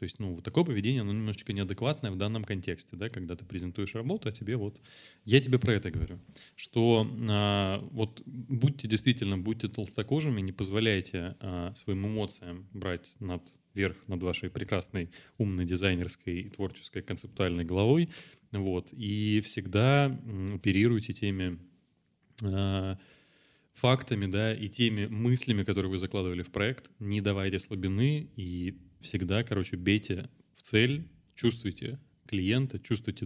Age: 20-39